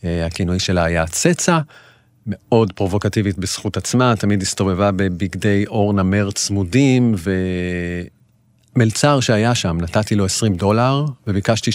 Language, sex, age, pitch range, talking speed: Hebrew, male, 40-59, 95-120 Hz, 110 wpm